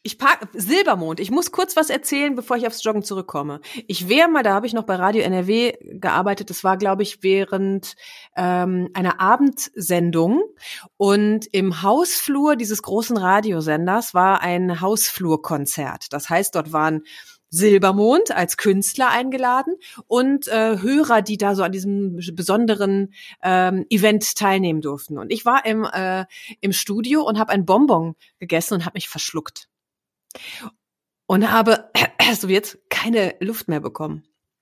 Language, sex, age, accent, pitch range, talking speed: German, female, 30-49, German, 180-230 Hz, 145 wpm